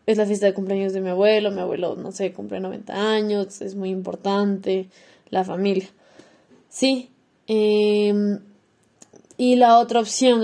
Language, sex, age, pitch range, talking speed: Spanish, female, 10-29, 195-230 Hz, 150 wpm